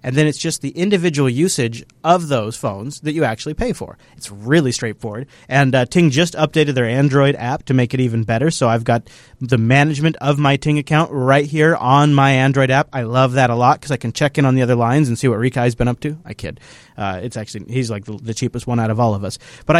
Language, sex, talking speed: English, male, 255 wpm